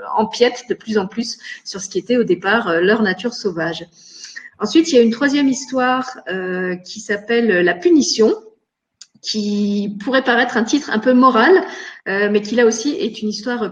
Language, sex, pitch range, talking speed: French, female, 200-260 Hz, 185 wpm